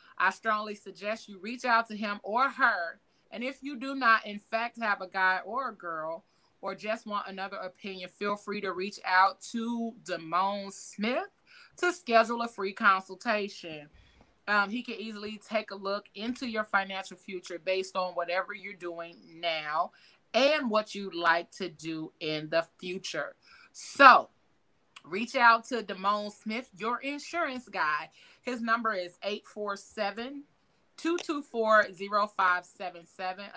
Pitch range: 185-230 Hz